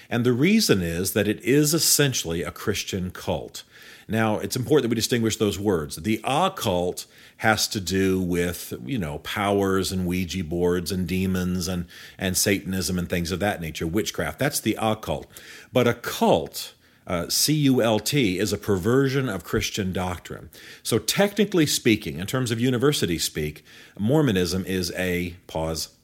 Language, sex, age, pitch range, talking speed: English, male, 40-59, 90-125 Hz, 165 wpm